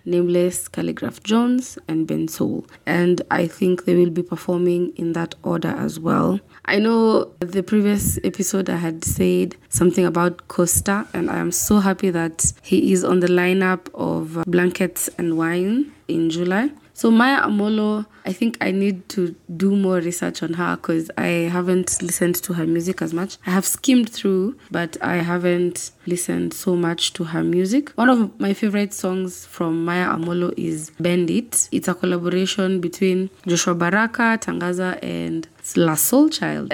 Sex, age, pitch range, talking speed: female, 20-39, 175-200 Hz, 165 wpm